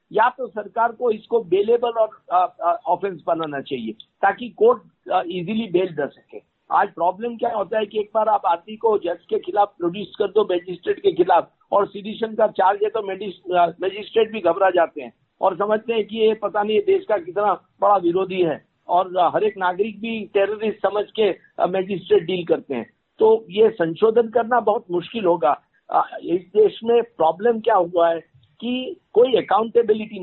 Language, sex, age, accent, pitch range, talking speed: Hindi, male, 50-69, native, 185-240 Hz, 180 wpm